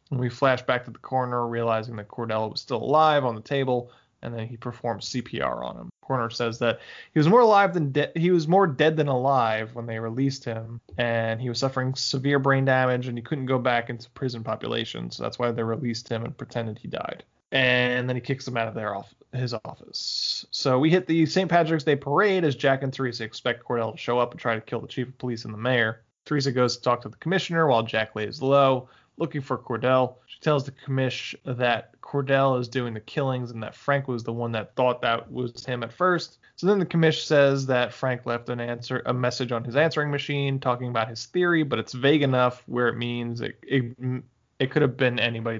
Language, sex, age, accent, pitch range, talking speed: English, male, 20-39, American, 120-140 Hz, 230 wpm